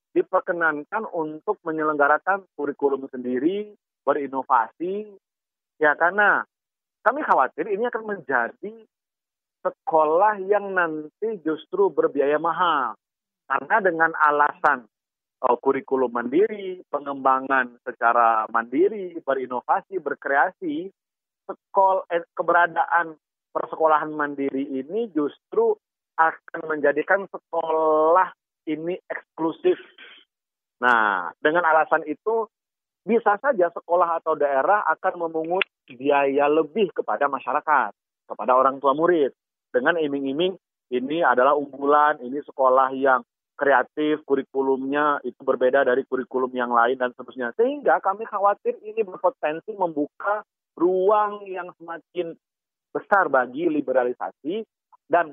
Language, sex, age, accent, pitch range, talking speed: Indonesian, male, 40-59, native, 140-205 Hz, 100 wpm